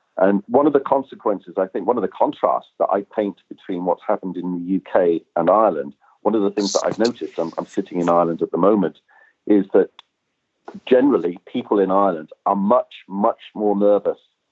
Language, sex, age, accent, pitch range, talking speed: English, male, 40-59, British, 95-105 Hz, 200 wpm